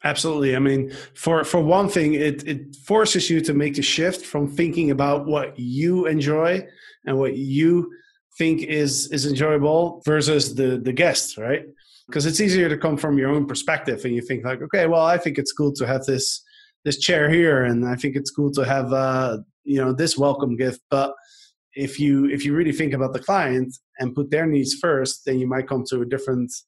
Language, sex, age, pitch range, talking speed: English, male, 20-39, 135-165 Hz, 210 wpm